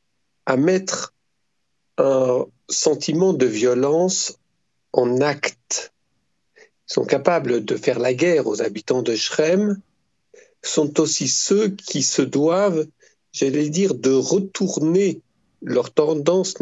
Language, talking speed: French, 110 wpm